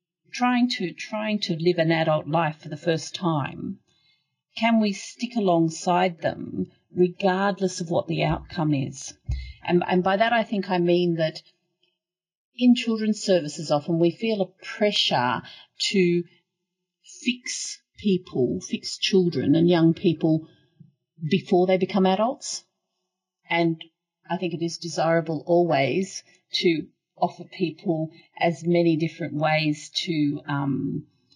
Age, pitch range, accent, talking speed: 40-59, 155-190 Hz, Australian, 130 wpm